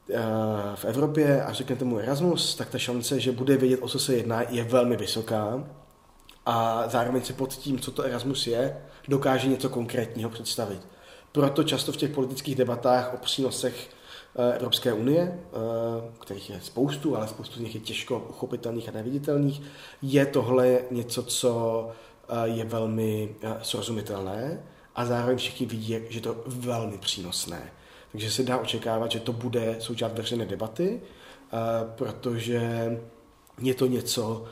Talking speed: 145 wpm